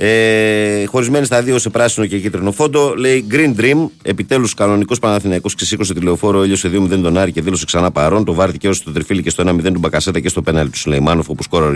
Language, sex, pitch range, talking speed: Greek, male, 85-105 Hz, 215 wpm